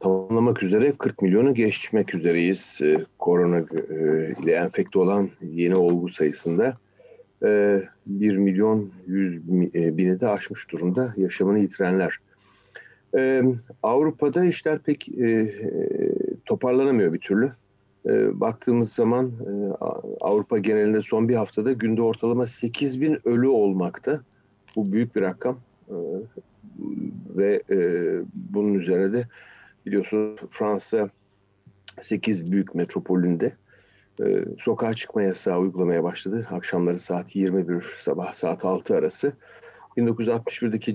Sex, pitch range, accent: male, 95-120 Hz, native